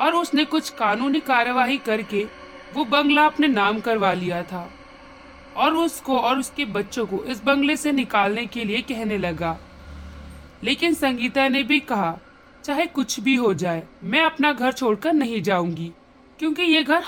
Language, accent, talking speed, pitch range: Hindi, native, 170 wpm, 195-290 Hz